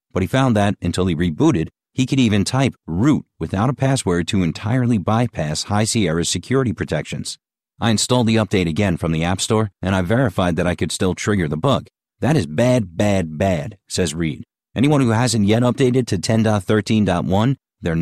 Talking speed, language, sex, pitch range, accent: 185 wpm, English, male, 90-115 Hz, American